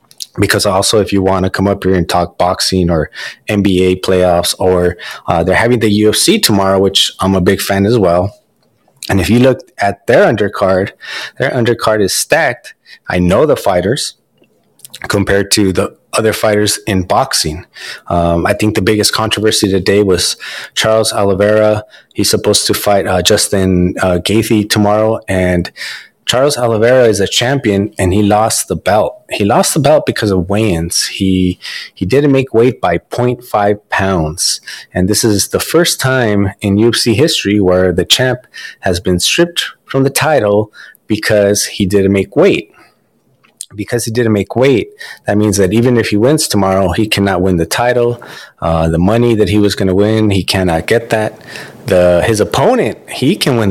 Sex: male